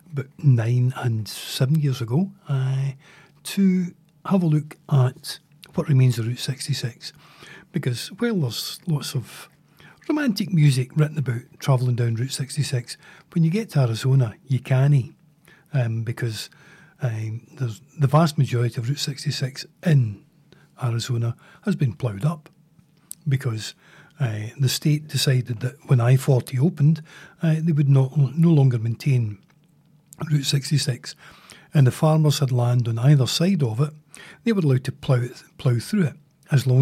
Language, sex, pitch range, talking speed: English, male, 125-160 Hz, 145 wpm